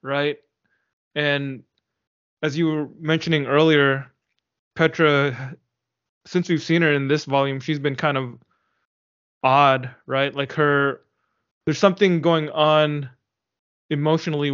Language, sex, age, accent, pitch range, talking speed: English, male, 20-39, American, 135-155 Hz, 115 wpm